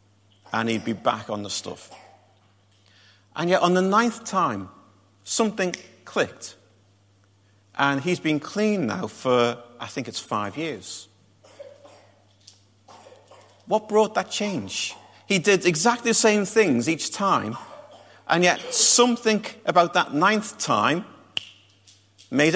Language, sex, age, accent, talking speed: English, male, 40-59, British, 120 wpm